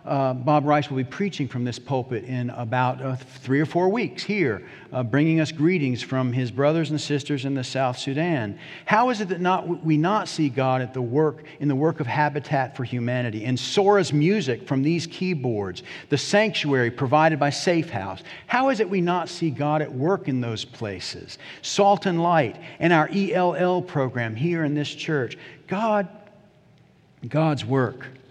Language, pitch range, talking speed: English, 125-165 Hz, 185 wpm